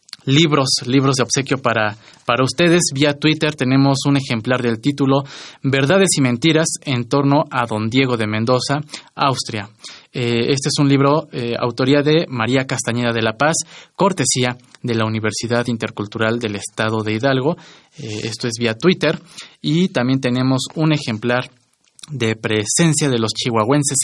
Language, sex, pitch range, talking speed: Spanish, male, 115-145 Hz, 155 wpm